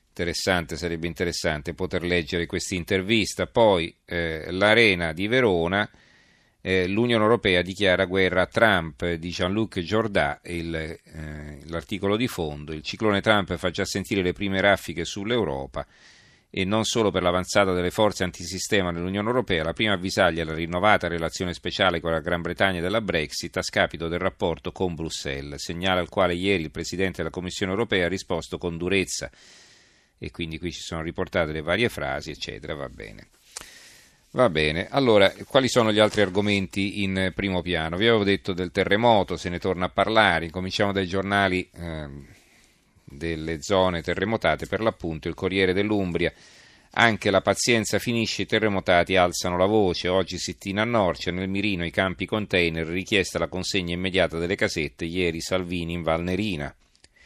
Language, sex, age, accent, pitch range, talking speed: Italian, male, 40-59, native, 85-100 Hz, 160 wpm